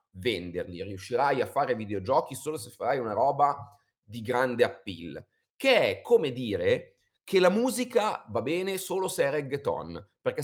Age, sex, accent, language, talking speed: 30-49, male, native, Italian, 155 wpm